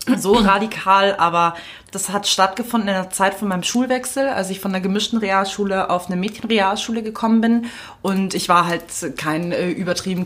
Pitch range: 185-210 Hz